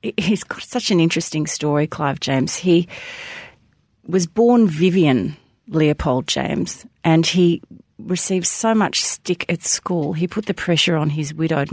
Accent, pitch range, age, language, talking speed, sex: Australian, 135-170 Hz, 40-59, English, 150 wpm, female